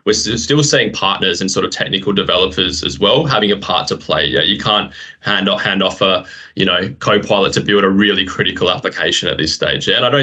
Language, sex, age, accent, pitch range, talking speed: English, male, 20-39, Australian, 100-120 Hz, 225 wpm